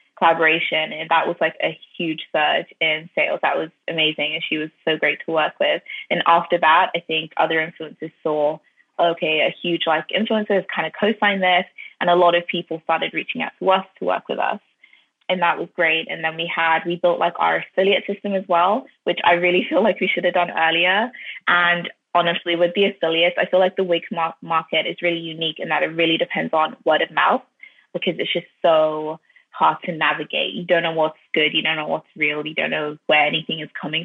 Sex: female